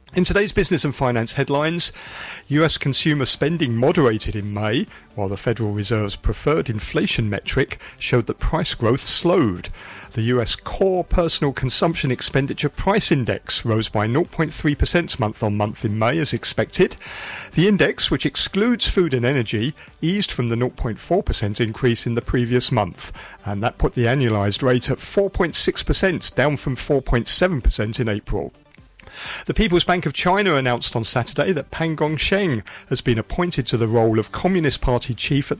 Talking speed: 155 wpm